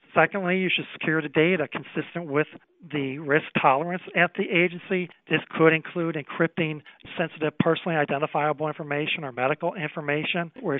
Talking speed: 145 wpm